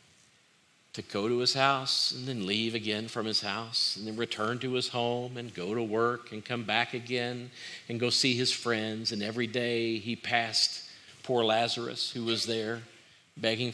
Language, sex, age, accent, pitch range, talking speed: English, male, 50-69, American, 105-120 Hz, 185 wpm